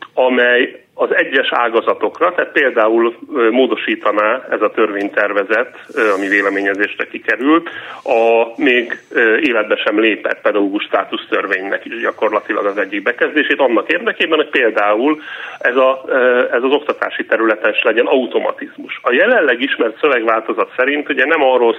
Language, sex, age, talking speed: Hungarian, male, 30-49, 125 wpm